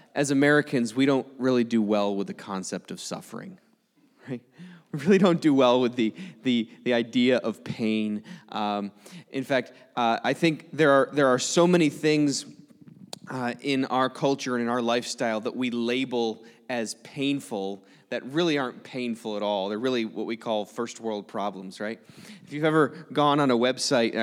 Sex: male